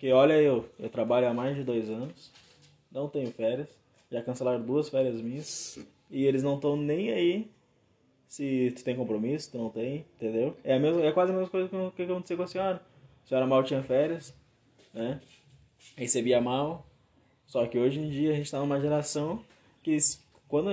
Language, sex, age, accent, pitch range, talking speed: Portuguese, male, 20-39, Brazilian, 115-150 Hz, 195 wpm